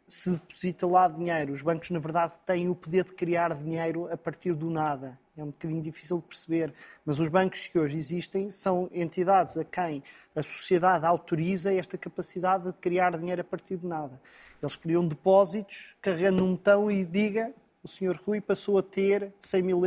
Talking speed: 185 wpm